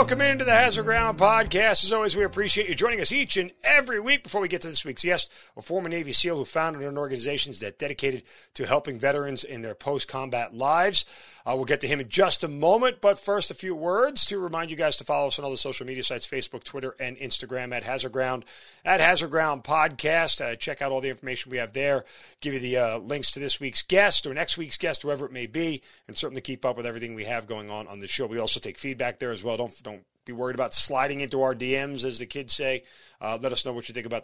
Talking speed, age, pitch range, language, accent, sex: 255 wpm, 40-59, 120-155 Hz, English, American, male